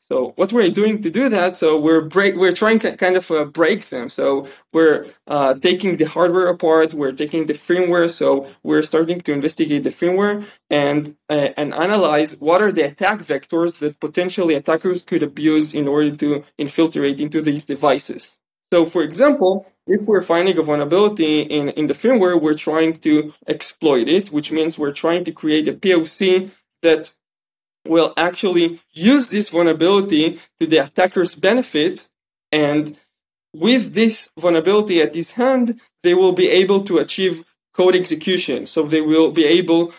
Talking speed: 170 wpm